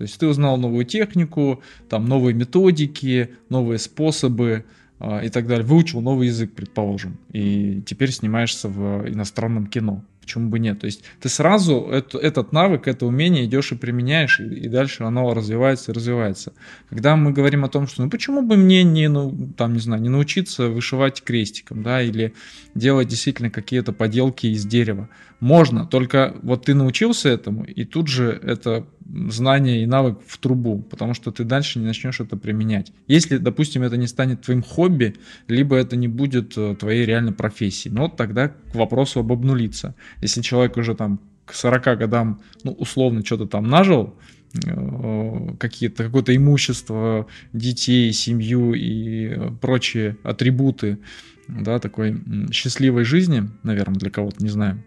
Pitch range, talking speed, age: 110-135 Hz, 160 wpm, 20-39